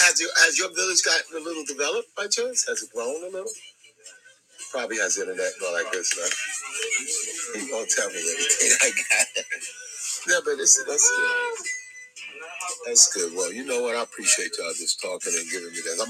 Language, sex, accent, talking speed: English, male, American, 200 wpm